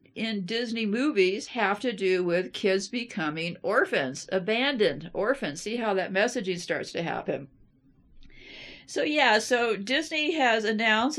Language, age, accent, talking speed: English, 50-69, American, 135 wpm